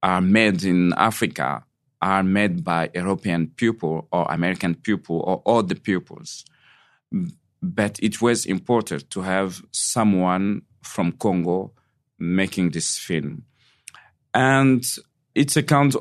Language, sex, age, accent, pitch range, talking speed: English, male, 40-59, French, 95-125 Hz, 120 wpm